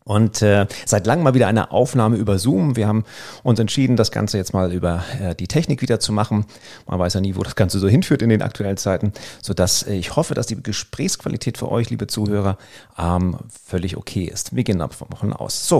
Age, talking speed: 40-59, 220 wpm